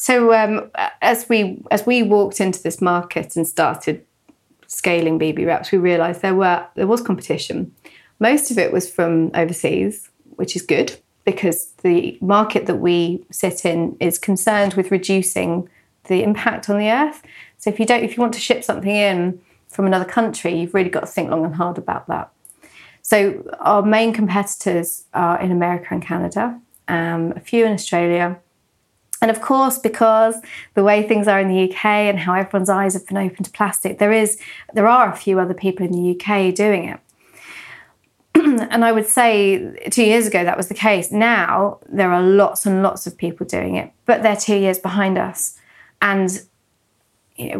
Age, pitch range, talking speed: 30-49, 180-220 Hz, 185 wpm